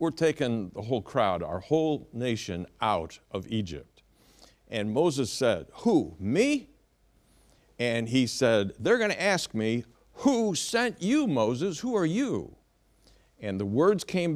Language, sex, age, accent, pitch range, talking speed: English, male, 60-79, American, 95-135 Hz, 145 wpm